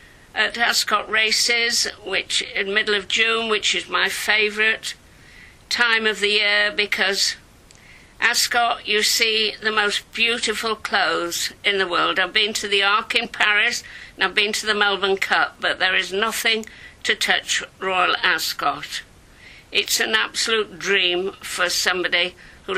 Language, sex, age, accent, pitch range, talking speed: English, female, 50-69, British, 205-230 Hz, 150 wpm